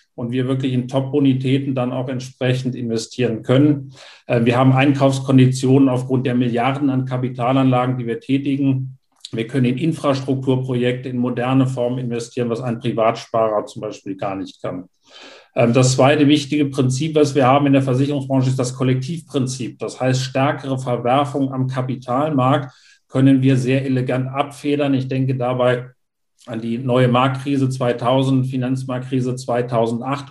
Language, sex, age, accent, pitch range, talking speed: German, male, 50-69, German, 125-135 Hz, 145 wpm